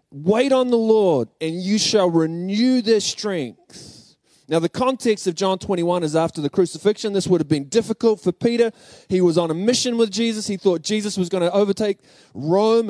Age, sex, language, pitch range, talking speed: 20-39, male, English, 160-215 Hz, 195 wpm